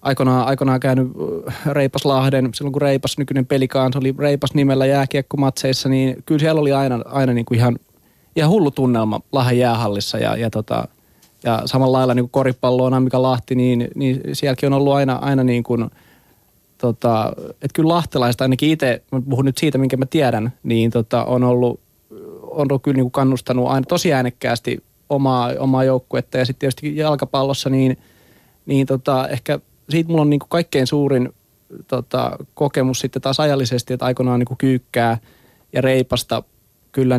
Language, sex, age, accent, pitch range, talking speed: Finnish, male, 20-39, native, 120-135 Hz, 165 wpm